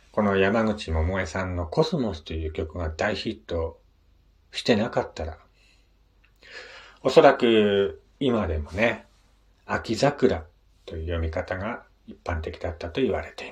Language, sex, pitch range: Japanese, male, 85-110 Hz